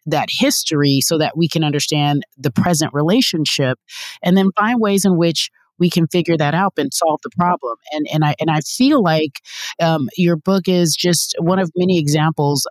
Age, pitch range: 30-49, 135-160 Hz